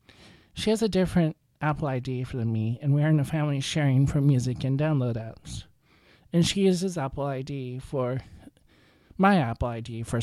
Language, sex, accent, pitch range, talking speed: English, male, American, 120-155 Hz, 175 wpm